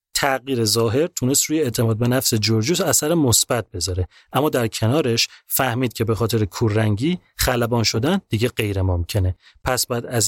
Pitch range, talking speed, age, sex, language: 110-145 Hz, 160 wpm, 30-49, male, Persian